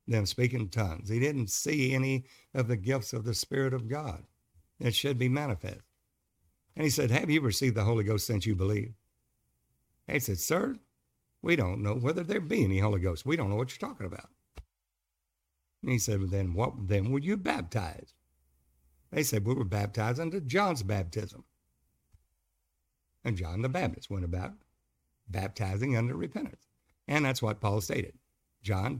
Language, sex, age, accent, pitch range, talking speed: English, male, 60-79, American, 100-130 Hz, 170 wpm